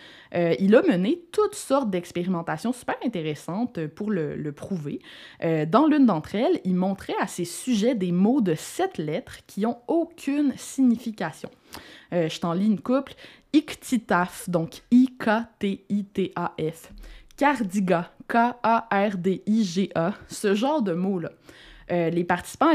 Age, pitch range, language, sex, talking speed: 20-39, 180-245 Hz, French, female, 130 wpm